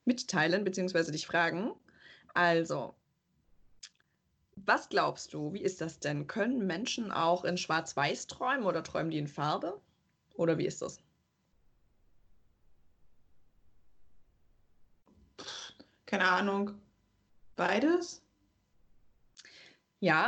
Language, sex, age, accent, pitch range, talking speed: German, female, 20-39, German, 170-205 Hz, 95 wpm